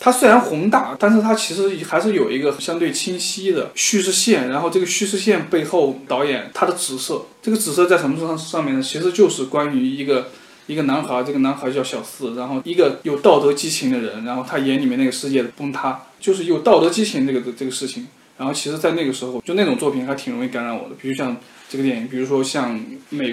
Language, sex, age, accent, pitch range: Chinese, male, 20-39, native, 135-220 Hz